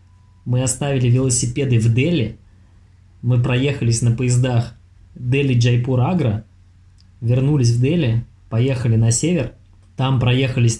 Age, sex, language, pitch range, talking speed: 20-39, male, Russian, 100-125 Hz, 100 wpm